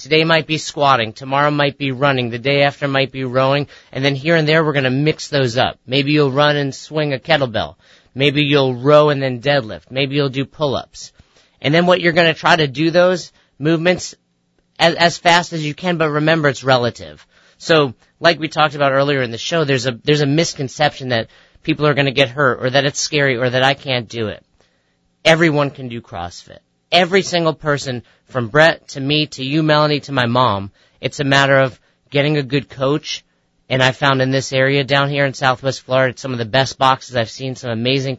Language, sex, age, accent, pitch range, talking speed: English, male, 30-49, American, 130-150 Hz, 215 wpm